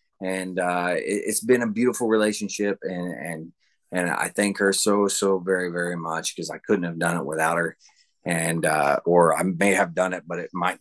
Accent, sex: American, male